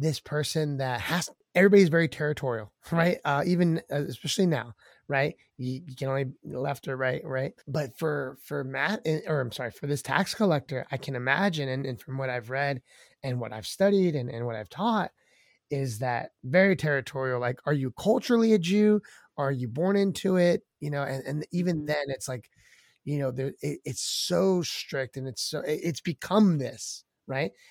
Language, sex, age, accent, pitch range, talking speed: English, male, 30-49, American, 130-160 Hz, 195 wpm